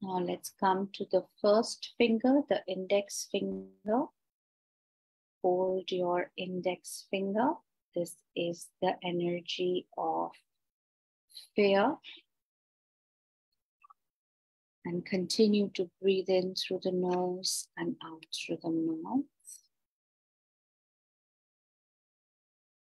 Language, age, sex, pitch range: English, 50-69, female, 175-215 Hz